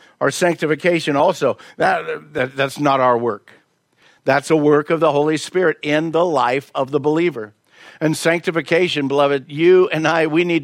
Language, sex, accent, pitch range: English, male, American, 130-160 Hz